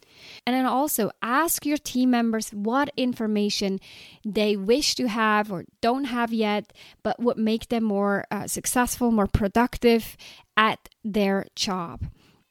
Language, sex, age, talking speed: English, female, 20-39, 140 wpm